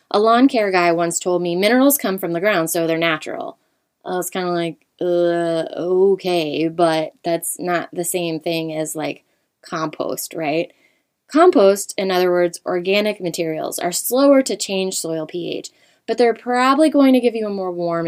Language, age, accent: English, 20-39, American